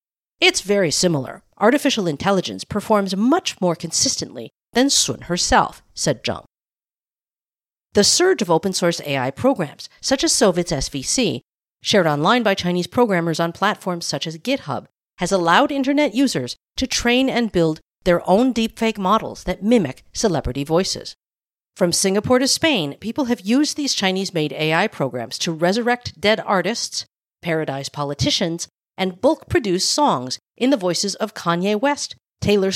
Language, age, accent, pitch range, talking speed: English, 50-69, American, 165-240 Hz, 145 wpm